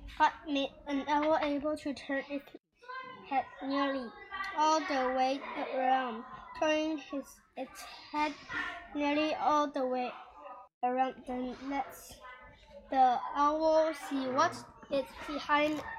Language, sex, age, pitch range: Chinese, female, 10-29, 265-310 Hz